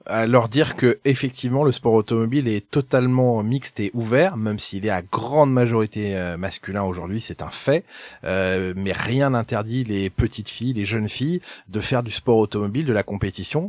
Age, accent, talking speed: 30-49, French, 180 wpm